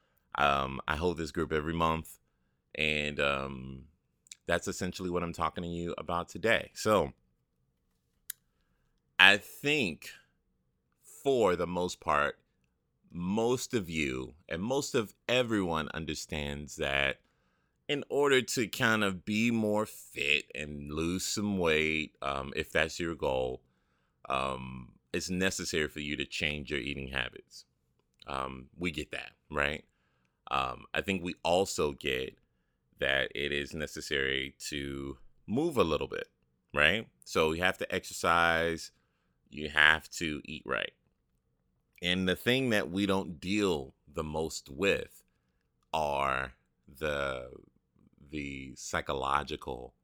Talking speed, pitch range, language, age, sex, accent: 125 wpm, 65-85 Hz, English, 30-49, male, American